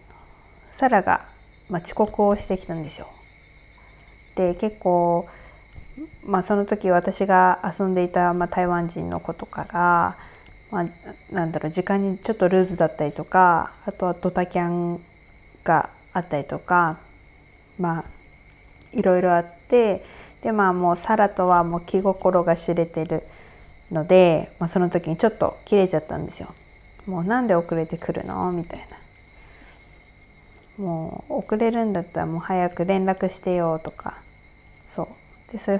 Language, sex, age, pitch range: Japanese, female, 20-39, 165-190 Hz